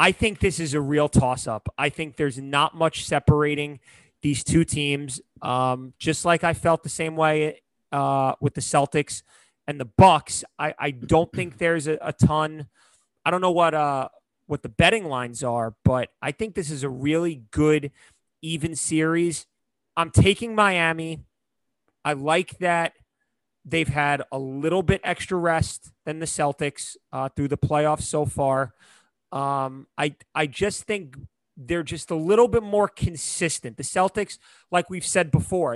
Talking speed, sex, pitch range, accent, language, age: 165 wpm, male, 140-175 Hz, American, English, 30-49